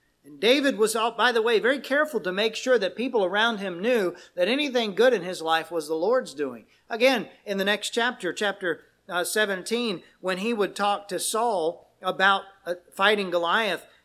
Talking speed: 175 wpm